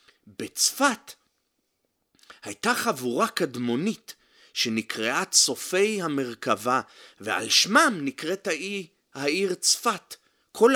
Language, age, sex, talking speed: Hebrew, 30-49, male, 80 wpm